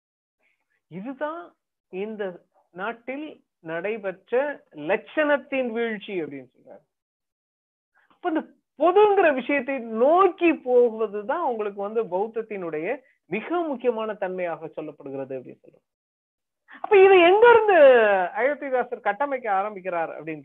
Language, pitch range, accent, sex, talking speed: Tamil, 210-290 Hz, native, female, 85 wpm